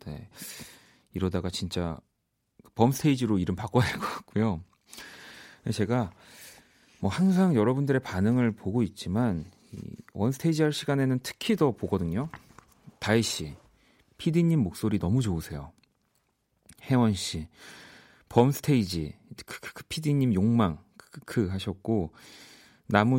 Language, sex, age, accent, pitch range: Korean, male, 40-59, native, 95-140 Hz